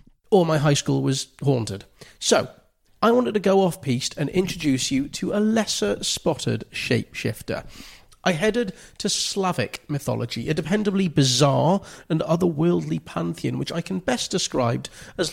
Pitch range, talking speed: 135-185 Hz, 140 wpm